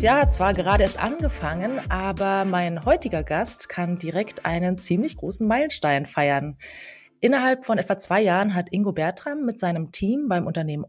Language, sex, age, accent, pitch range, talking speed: German, female, 20-39, German, 160-215 Hz, 160 wpm